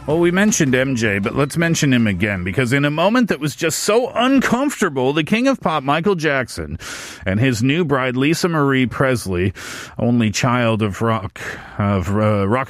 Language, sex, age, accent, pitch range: Korean, male, 40-59, American, 125-185 Hz